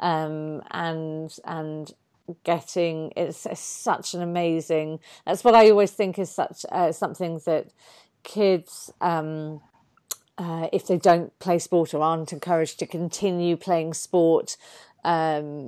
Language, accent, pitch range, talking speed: English, British, 160-185 Hz, 135 wpm